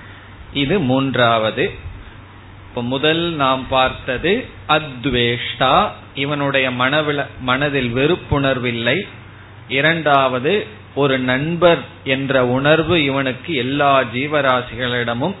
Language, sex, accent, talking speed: Tamil, male, native, 55 wpm